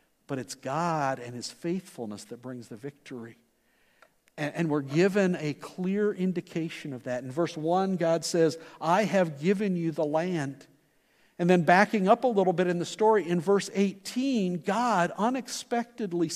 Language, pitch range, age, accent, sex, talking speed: English, 155-205 Hz, 50-69, American, male, 165 wpm